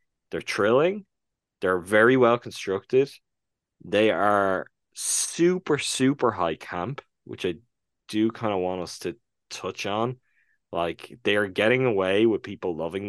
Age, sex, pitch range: 10-29, male, 90-115 Hz